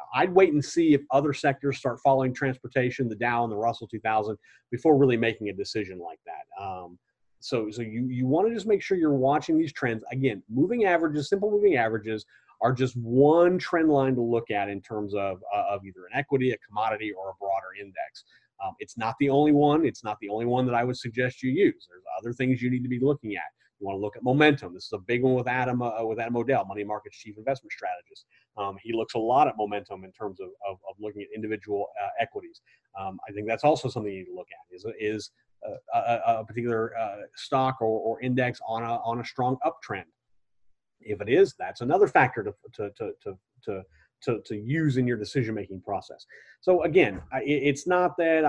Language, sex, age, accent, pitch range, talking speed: English, male, 30-49, American, 110-145 Hz, 220 wpm